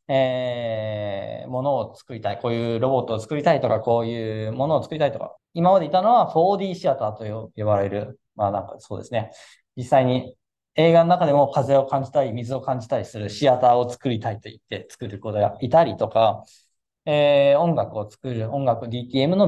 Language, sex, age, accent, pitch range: Japanese, male, 20-39, native, 115-170 Hz